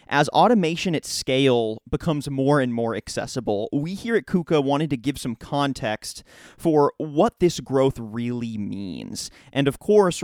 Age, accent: 30-49, American